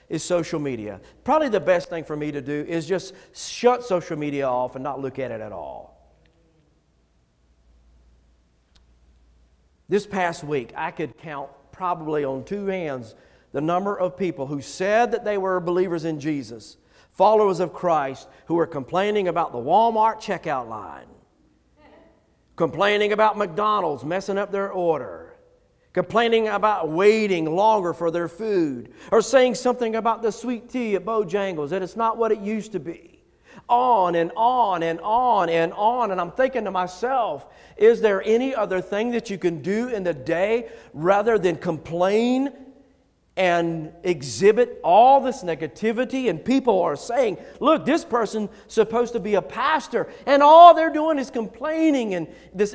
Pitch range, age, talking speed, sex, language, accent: 155-225 Hz, 50-69, 160 wpm, male, English, American